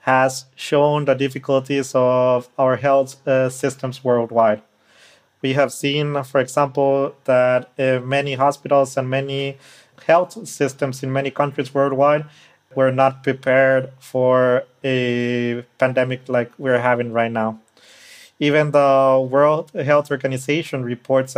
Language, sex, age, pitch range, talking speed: German, male, 30-49, 130-145 Hz, 125 wpm